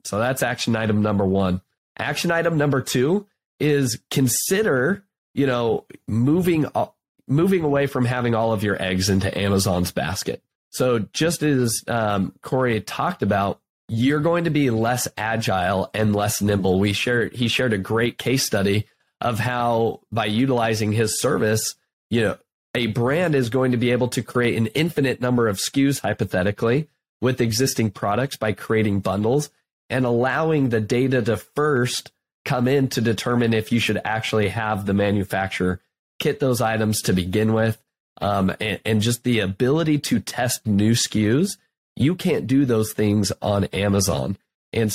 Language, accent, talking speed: English, American, 160 wpm